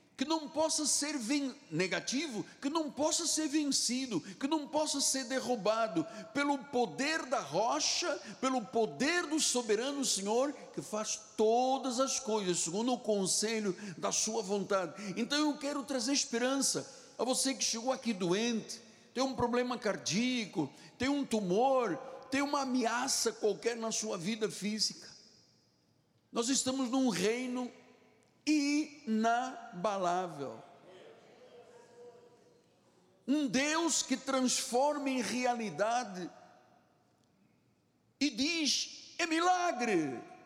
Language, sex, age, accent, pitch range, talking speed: Portuguese, male, 60-79, Brazilian, 195-275 Hz, 115 wpm